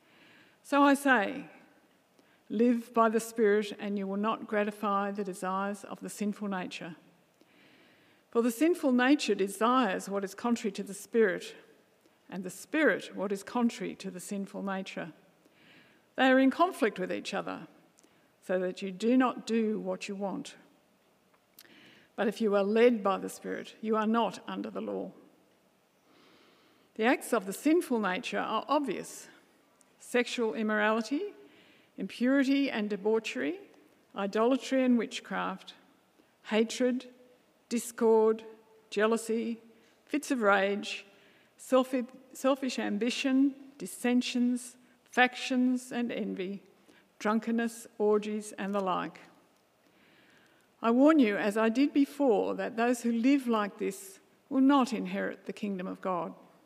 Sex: female